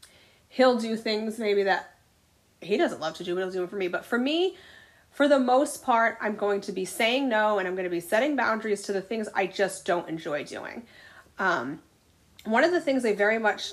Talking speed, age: 225 wpm, 30-49